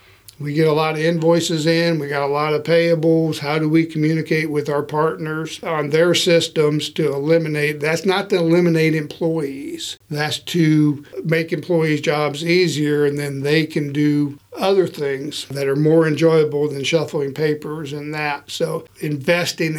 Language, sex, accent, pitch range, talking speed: English, male, American, 145-165 Hz, 165 wpm